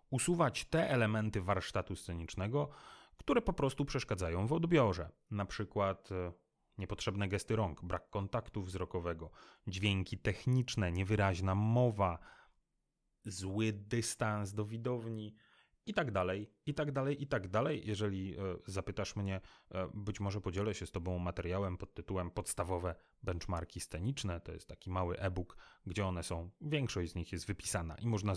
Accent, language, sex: native, Polish, male